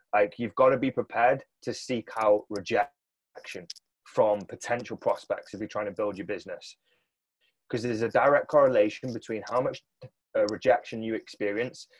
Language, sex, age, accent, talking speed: English, male, 20-39, British, 155 wpm